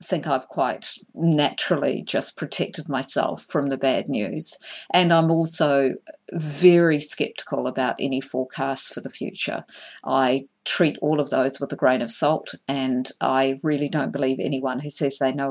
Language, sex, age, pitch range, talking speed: English, female, 50-69, 140-200 Hz, 165 wpm